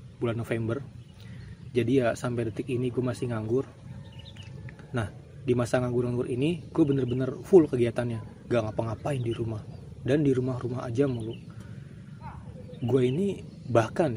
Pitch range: 115-140 Hz